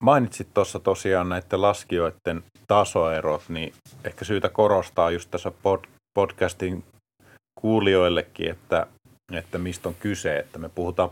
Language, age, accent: Finnish, 30-49, native